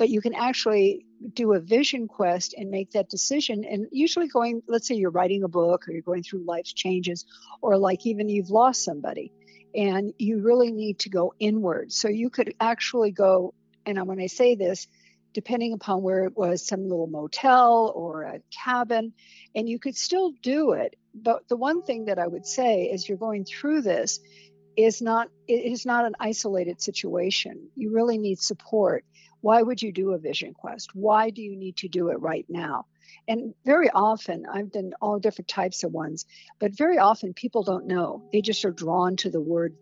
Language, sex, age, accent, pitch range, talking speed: English, female, 60-79, American, 185-230 Hz, 195 wpm